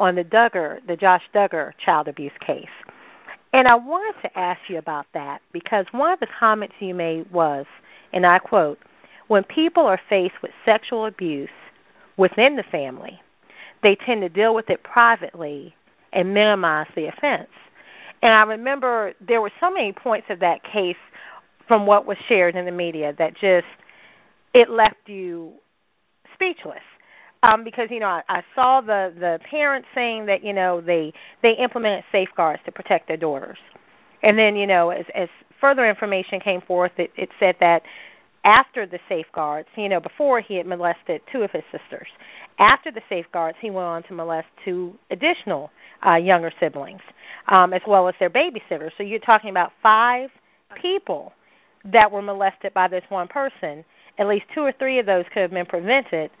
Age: 40-59